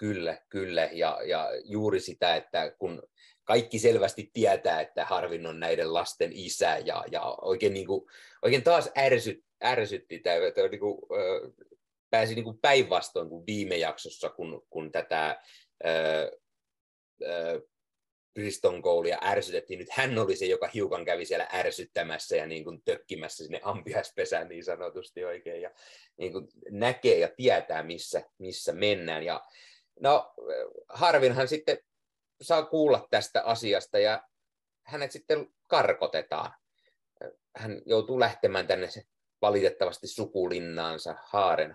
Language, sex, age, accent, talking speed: Finnish, male, 30-49, native, 125 wpm